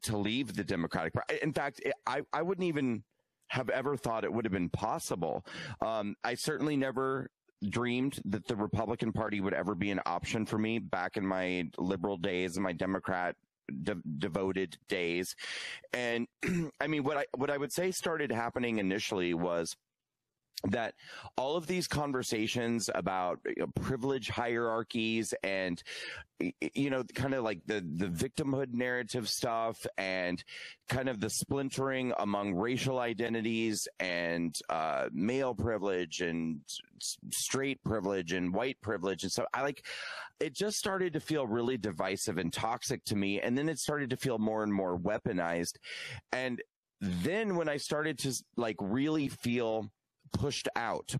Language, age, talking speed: English, 30-49, 155 wpm